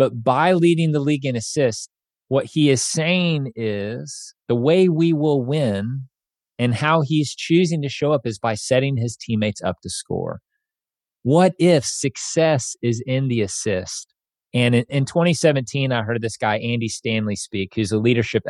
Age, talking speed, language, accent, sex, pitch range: 30-49, 170 wpm, English, American, male, 110-155 Hz